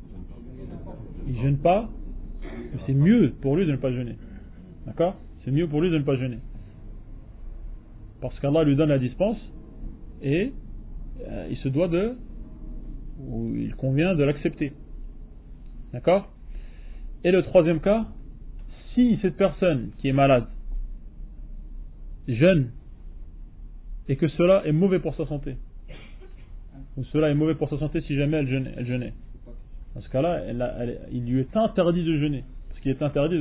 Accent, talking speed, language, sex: French, 155 wpm, French, male